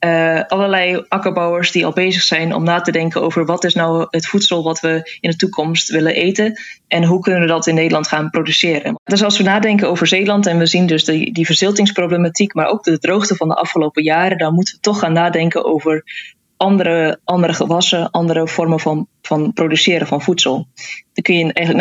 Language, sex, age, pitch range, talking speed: Dutch, female, 20-39, 160-190 Hz, 205 wpm